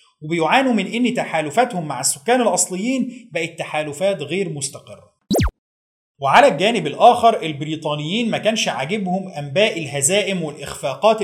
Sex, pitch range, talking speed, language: male, 160-225 Hz, 110 wpm, Arabic